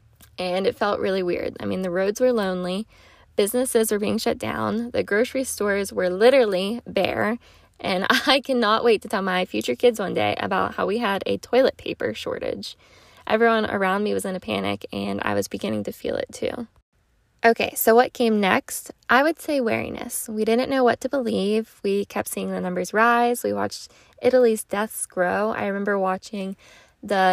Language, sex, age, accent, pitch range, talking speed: English, female, 10-29, American, 185-235 Hz, 190 wpm